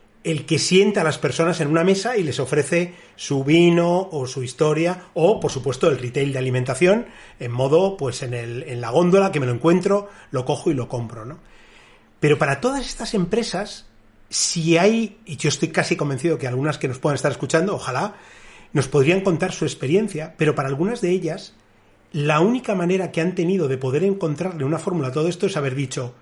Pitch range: 135-190 Hz